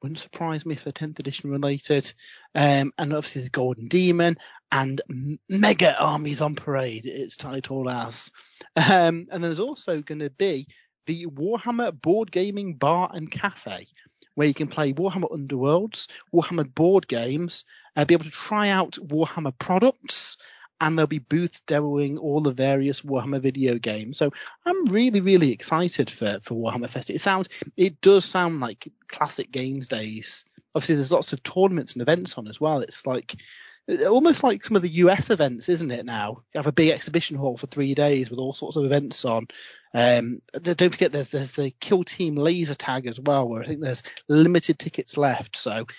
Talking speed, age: 185 wpm, 30-49